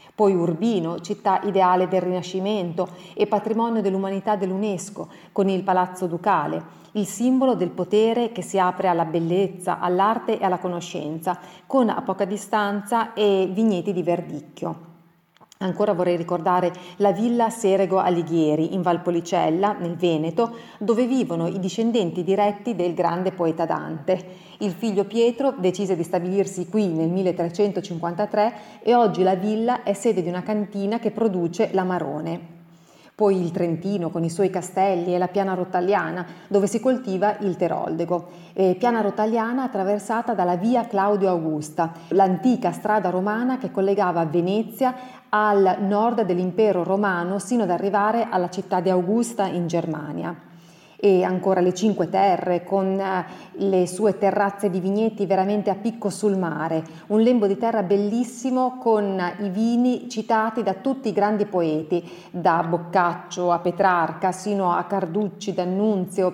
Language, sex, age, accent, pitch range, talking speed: English, female, 40-59, Italian, 180-210 Hz, 140 wpm